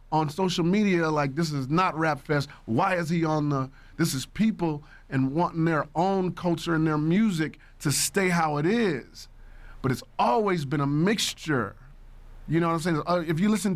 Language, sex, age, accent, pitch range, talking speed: English, male, 30-49, American, 150-190 Hz, 190 wpm